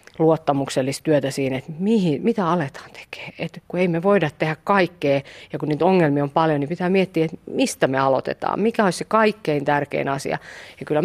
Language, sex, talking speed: Finnish, female, 195 wpm